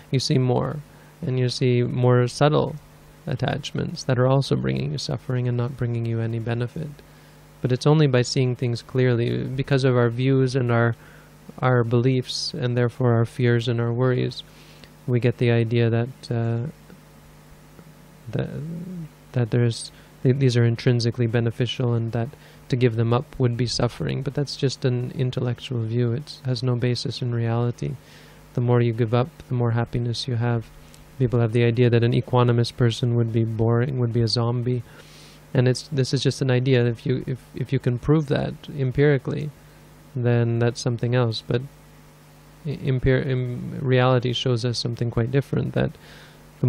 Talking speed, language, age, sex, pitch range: 175 wpm, English, 20-39, male, 120-130 Hz